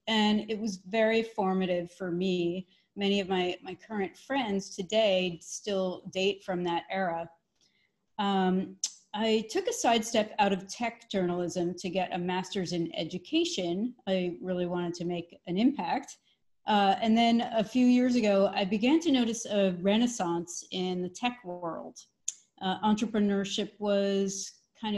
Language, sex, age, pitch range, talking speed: English, female, 30-49, 185-225 Hz, 150 wpm